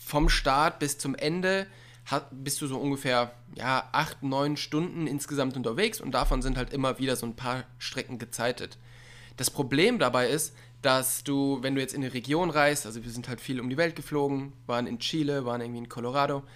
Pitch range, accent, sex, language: 120-145 Hz, German, male, German